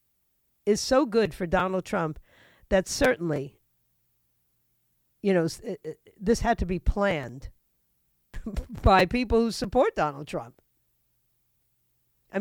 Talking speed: 105 wpm